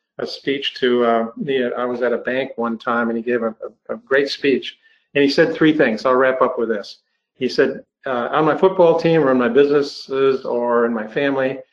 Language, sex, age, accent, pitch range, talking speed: English, male, 50-69, American, 120-140 Hz, 230 wpm